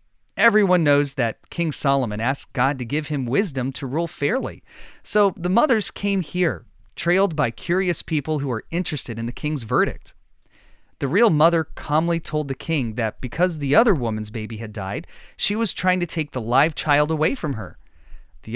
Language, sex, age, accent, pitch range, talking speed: English, male, 30-49, American, 120-175 Hz, 185 wpm